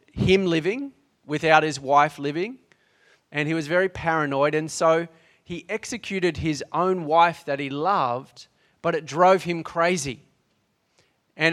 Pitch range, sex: 140-170 Hz, male